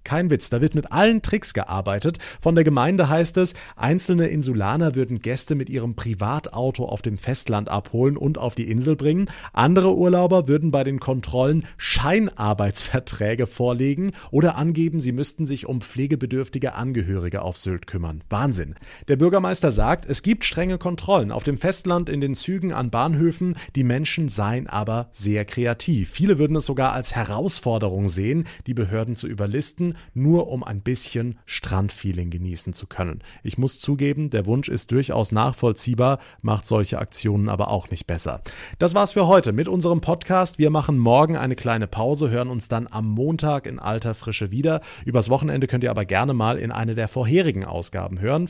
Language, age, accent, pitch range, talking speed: German, 30-49, German, 110-155 Hz, 170 wpm